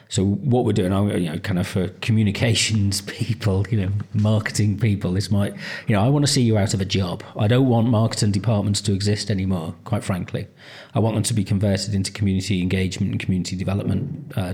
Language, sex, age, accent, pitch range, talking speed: English, male, 40-59, British, 95-110 Hz, 210 wpm